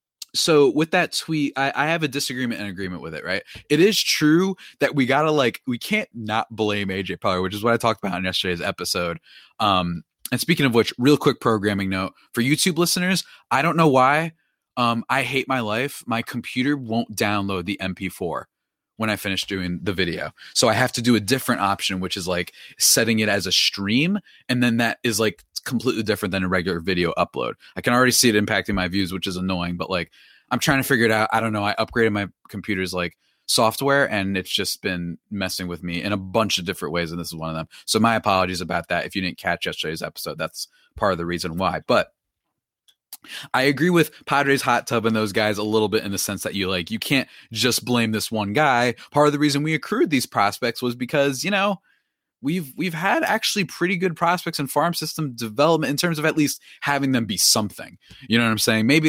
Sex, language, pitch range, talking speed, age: male, English, 100-140 Hz, 230 wpm, 20-39